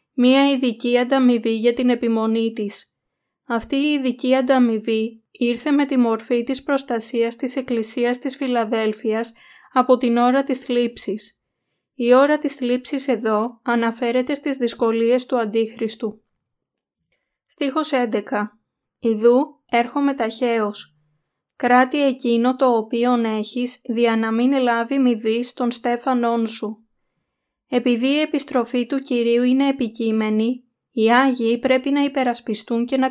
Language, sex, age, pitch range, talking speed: Greek, female, 20-39, 230-260 Hz, 120 wpm